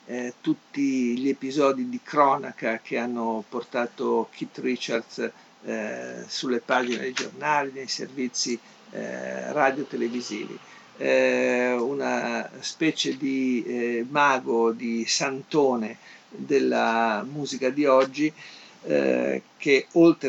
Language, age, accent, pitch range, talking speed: Italian, 50-69, native, 120-140 Hz, 110 wpm